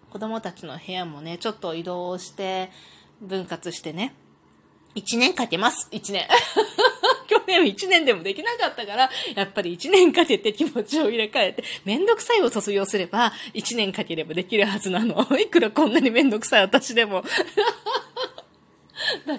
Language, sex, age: Japanese, female, 20-39